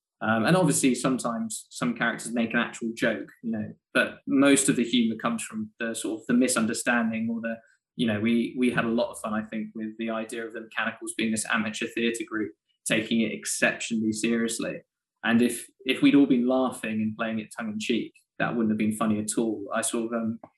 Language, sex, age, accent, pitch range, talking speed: English, male, 20-39, British, 110-125 Hz, 220 wpm